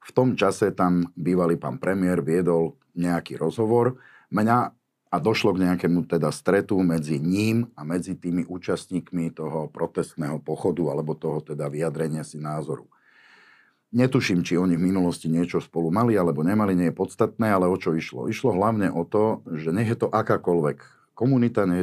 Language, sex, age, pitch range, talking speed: Slovak, male, 50-69, 80-100 Hz, 165 wpm